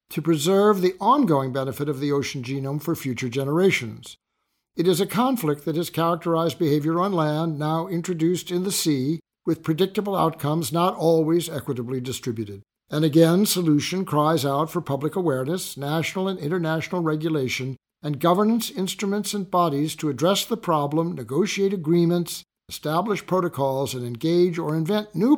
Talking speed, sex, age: 150 wpm, male, 60-79